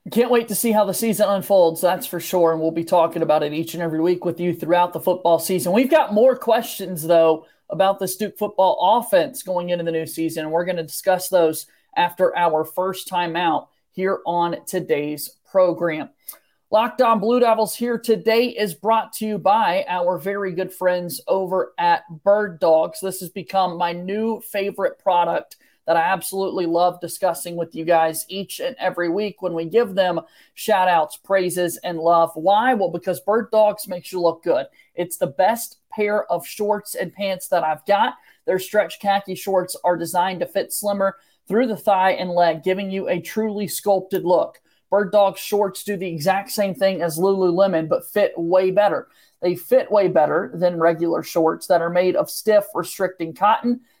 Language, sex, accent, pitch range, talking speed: English, male, American, 170-210 Hz, 190 wpm